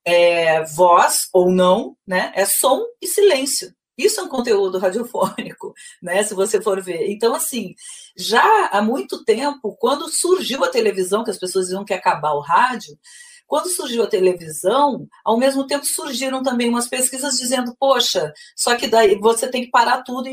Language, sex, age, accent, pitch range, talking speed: Portuguese, female, 40-59, Brazilian, 190-260 Hz, 175 wpm